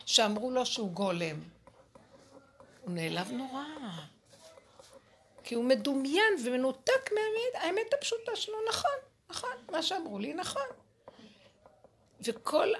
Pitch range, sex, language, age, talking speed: 220-315 Hz, female, Hebrew, 60-79, 105 wpm